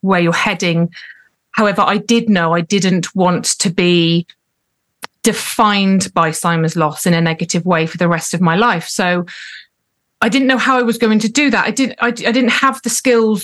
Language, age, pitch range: English, 30-49, 180-235 Hz